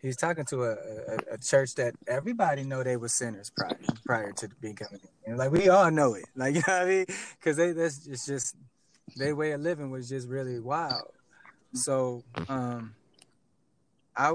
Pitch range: 130-160 Hz